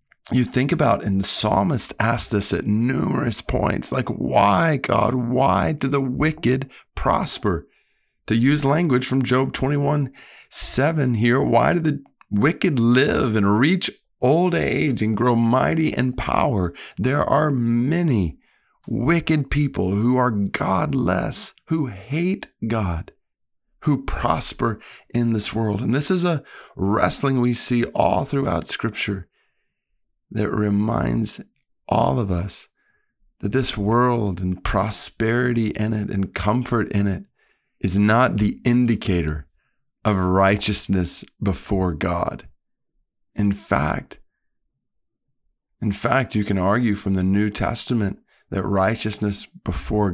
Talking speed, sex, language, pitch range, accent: 125 wpm, male, English, 95-125 Hz, American